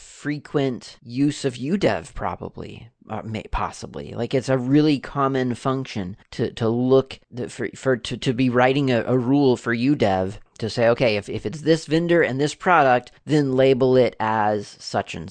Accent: American